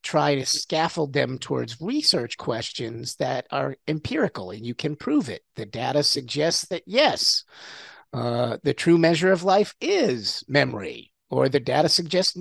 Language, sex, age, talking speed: English, male, 50-69, 155 wpm